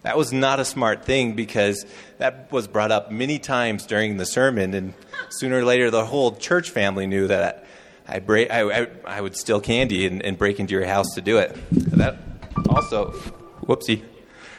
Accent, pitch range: American, 110-145 Hz